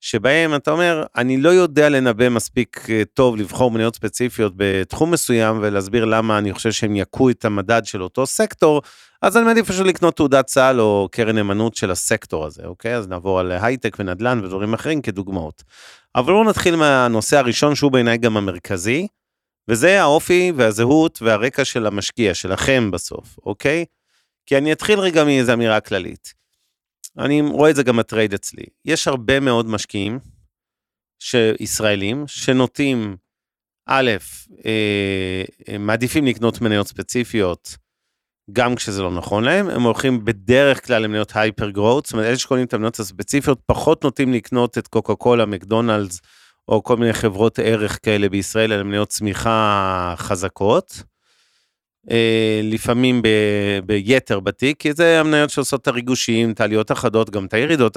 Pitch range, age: 105-130 Hz, 30-49